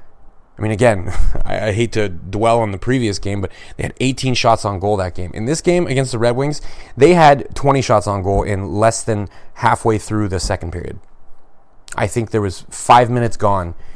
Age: 30-49